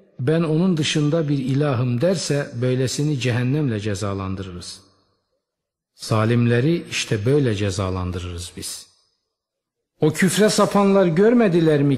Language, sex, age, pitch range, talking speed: Turkish, male, 50-69, 115-160 Hz, 95 wpm